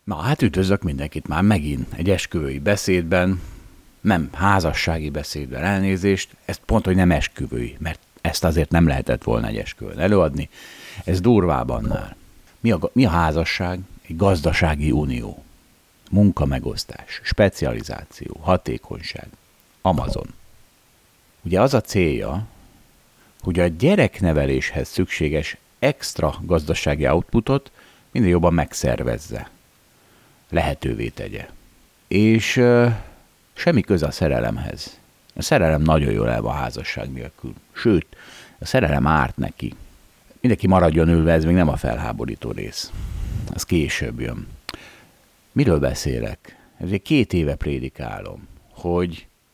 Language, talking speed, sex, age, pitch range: Hungarian, 115 wpm, male, 50-69, 80-100 Hz